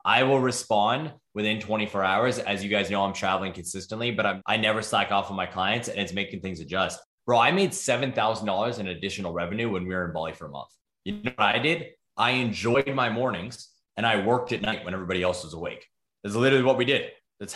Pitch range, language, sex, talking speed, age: 100-120 Hz, English, male, 230 wpm, 20-39